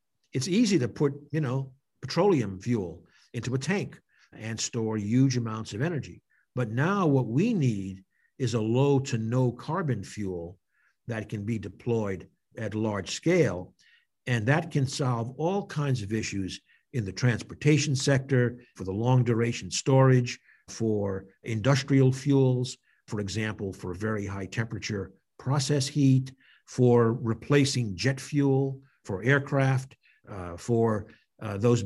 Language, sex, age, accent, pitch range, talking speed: English, male, 60-79, American, 110-135 Hz, 140 wpm